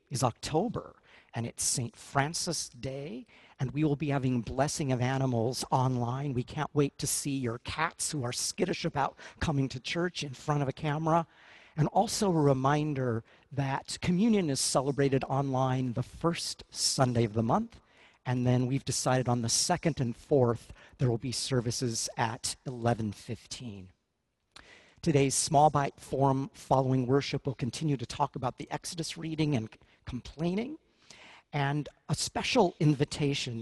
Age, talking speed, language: 50-69, 150 wpm, English